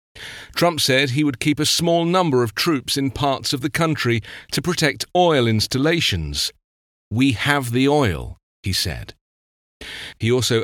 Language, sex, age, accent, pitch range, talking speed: English, male, 40-59, British, 105-145 Hz, 150 wpm